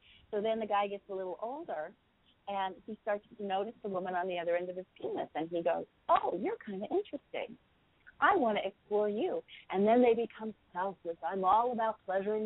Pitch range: 175-220 Hz